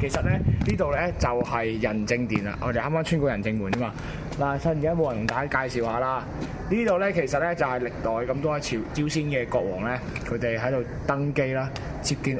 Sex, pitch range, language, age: male, 110-145 Hz, Chinese, 20-39